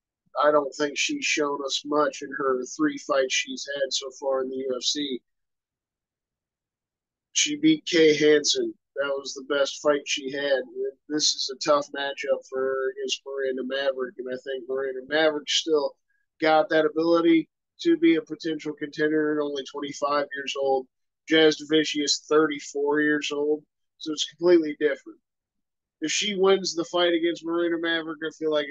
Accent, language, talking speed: American, English, 165 wpm